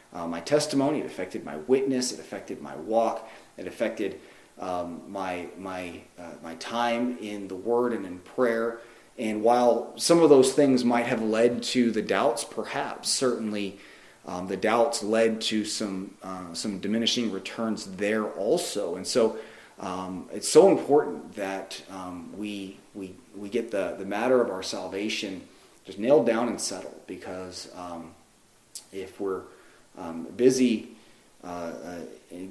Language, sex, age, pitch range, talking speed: English, male, 30-49, 95-120 Hz, 155 wpm